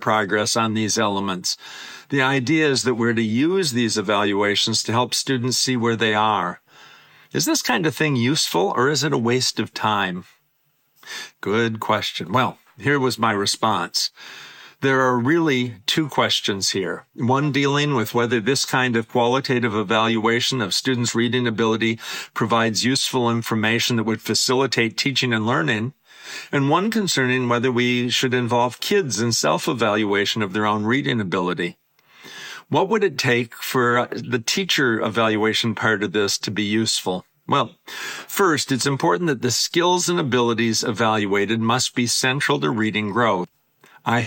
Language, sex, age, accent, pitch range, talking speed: English, male, 50-69, American, 110-130 Hz, 155 wpm